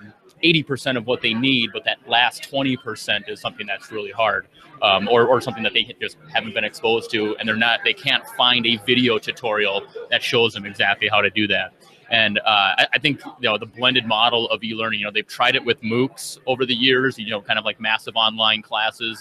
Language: English